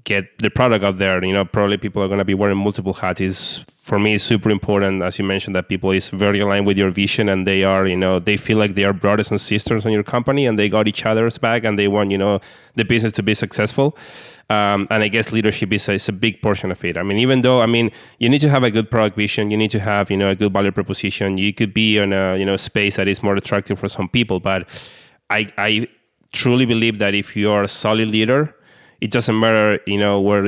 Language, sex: English, male